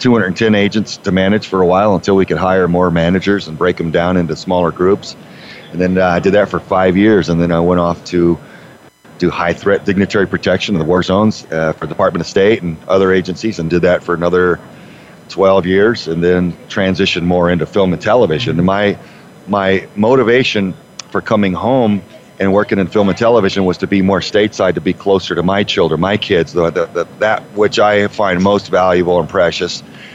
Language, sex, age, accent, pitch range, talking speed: English, male, 40-59, American, 85-100 Hz, 205 wpm